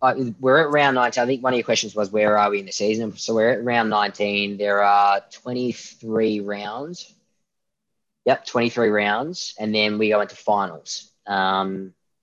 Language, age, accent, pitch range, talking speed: English, 20-39, Australian, 100-115 Hz, 180 wpm